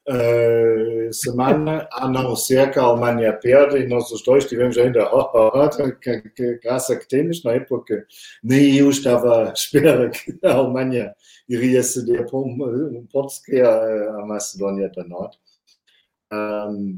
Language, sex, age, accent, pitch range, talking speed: Portuguese, male, 50-69, German, 110-130 Hz, 150 wpm